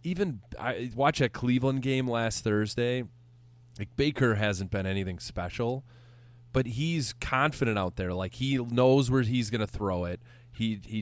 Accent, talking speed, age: American, 165 wpm, 20-39